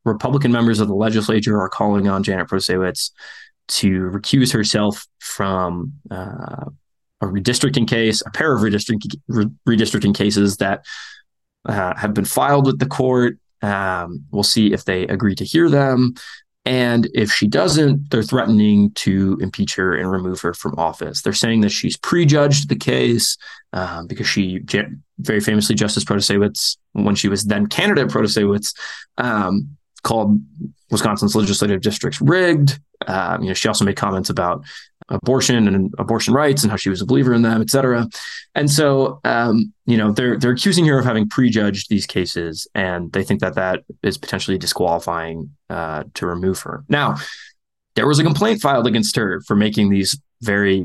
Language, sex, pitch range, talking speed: English, male, 100-125 Hz, 165 wpm